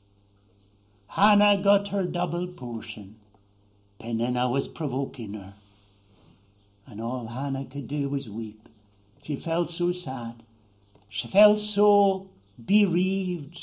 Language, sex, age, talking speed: English, male, 60-79, 105 wpm